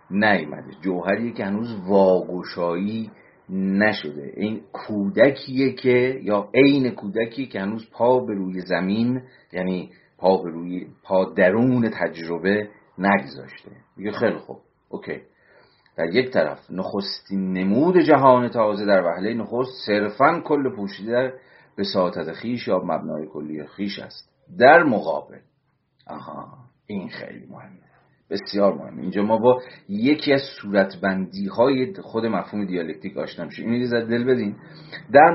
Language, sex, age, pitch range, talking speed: Persian, male, 40-59, 95-125 Hz, 130 wpm